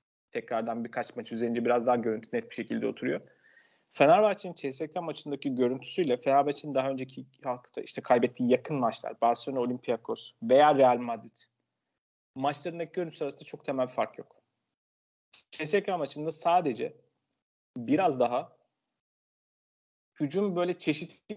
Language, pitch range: Turkish, 130-160 Hz